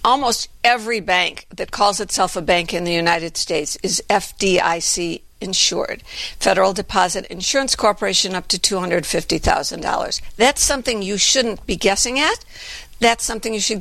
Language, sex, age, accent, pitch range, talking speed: English, female, 60-79, American, 190-230 Hz, 145 wpm